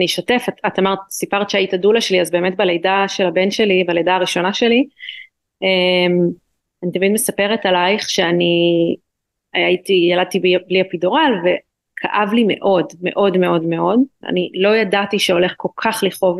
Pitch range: 185-225 Hz